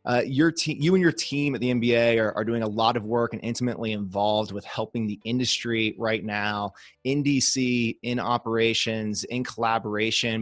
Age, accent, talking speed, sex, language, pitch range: 20-39, American, 185 wpm, male, English, 110-125 Hz